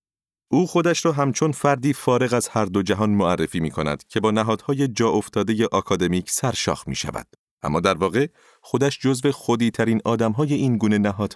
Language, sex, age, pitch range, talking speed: Persian, male, 30-49, 100-120 Hz, 185 wpm